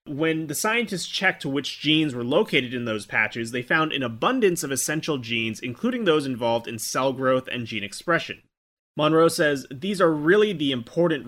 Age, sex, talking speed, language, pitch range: 30-49, male, 180 wpm, English, 120-165 Hz